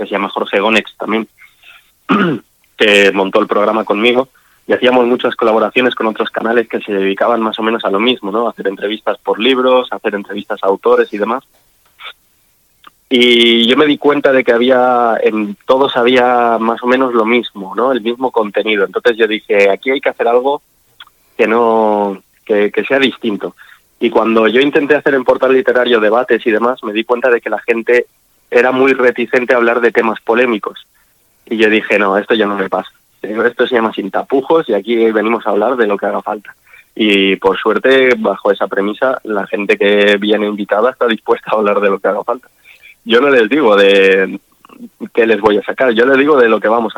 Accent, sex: Spanish, male